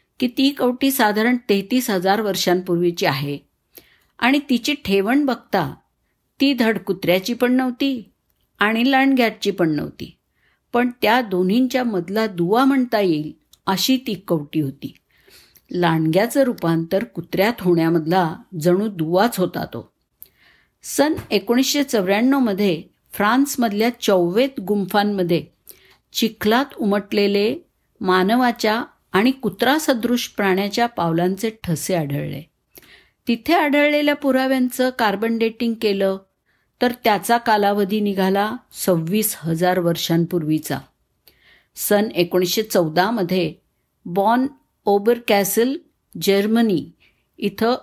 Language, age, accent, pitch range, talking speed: Marathi, 50-69, native, 185-245 Hz, 75 wpm